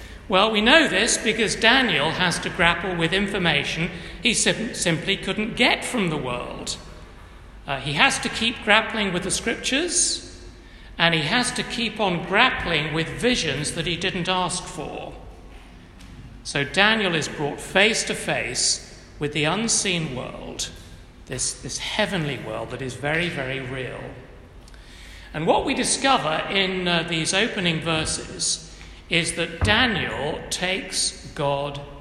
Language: English